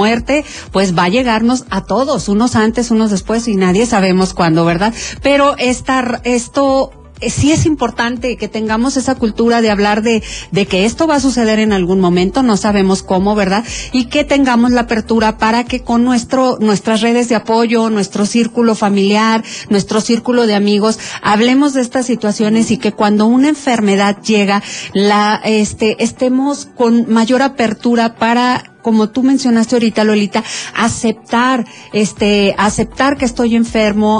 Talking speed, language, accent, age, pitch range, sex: 160 wpm, Spanish, Mexican, 40-59, 210-245 Hz, female